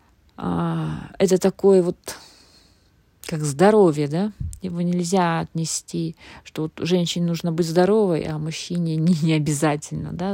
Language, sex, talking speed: Russian, female, 120 wpm